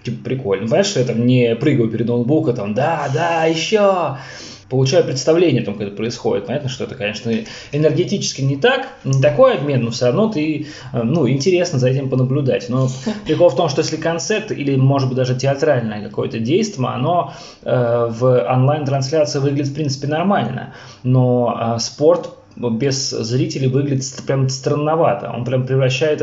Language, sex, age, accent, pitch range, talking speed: Russian, male, 20-39, native, 120-150 Hz, 160 wpm